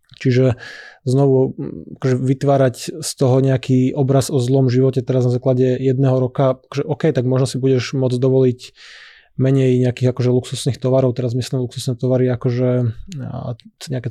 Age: 20-39